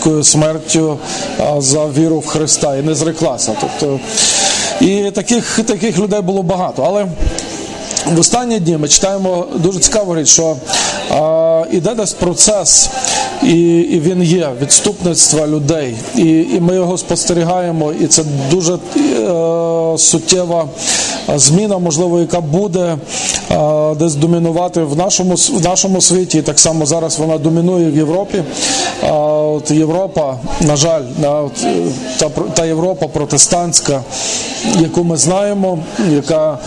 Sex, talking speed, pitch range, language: male, 120 wpm, 155-180 Hz, Ukrainian